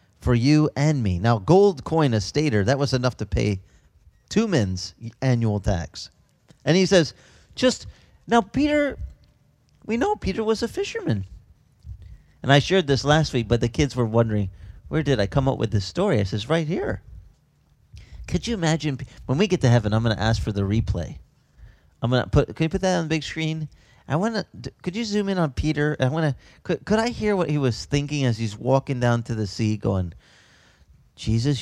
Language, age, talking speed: English, 40-59, 205 wpm